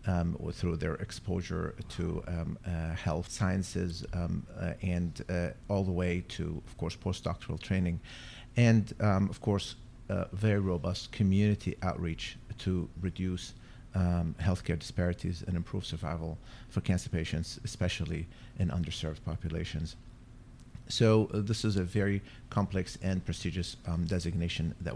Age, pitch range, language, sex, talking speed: 50-69, 85-105 Hz, English, male, 135 wpm